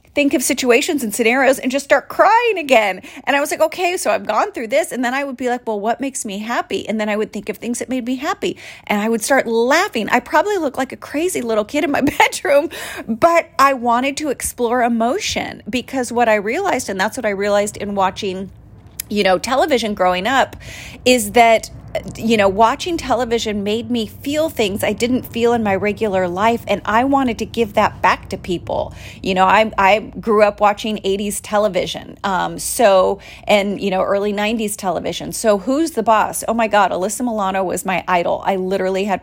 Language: English